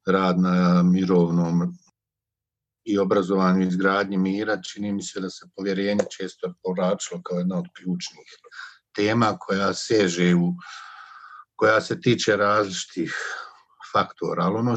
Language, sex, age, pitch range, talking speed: Croatian, male, 50-69, 90-105 Hz, 120 wpm